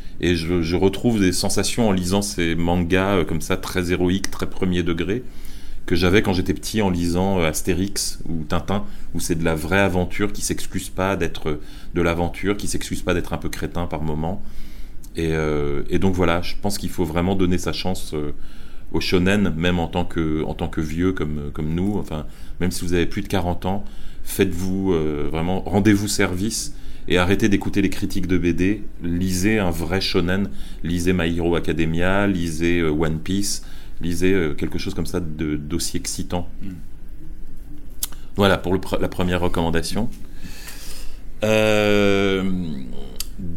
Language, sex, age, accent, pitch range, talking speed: French, male, 30-49, French, 85-100 Hz, 175 wpm